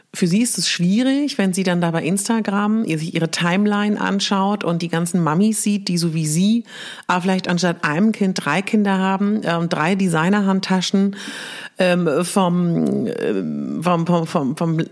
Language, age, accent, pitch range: German, 40-59, German, 175-230 Hz